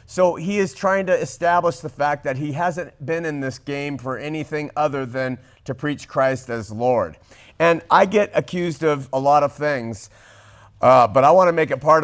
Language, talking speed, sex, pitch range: English, 205 wpm, male, 125-165 Hz